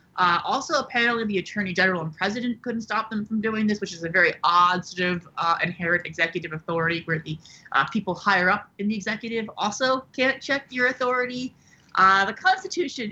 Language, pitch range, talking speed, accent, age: English, 165-215 Hz, 190 wpm, American, 30-49